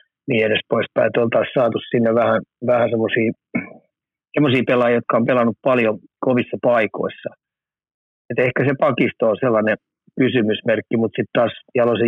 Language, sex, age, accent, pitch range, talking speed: Finnish, male, 30-49, native, 110-125 Hz, 145 wpm